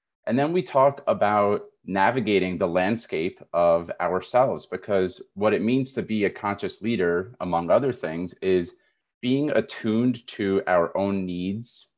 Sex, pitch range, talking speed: male, 90-125 Hz, 145 wpm